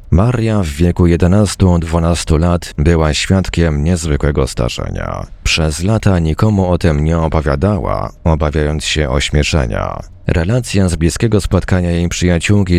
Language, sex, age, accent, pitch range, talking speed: Polish, male, 40-59, native, 80-95 Hz, 115 wpm